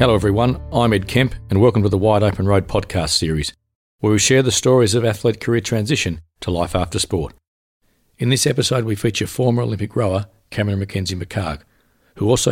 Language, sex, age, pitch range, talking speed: English, male, 50-69, 90-115 Hz, 185 wpm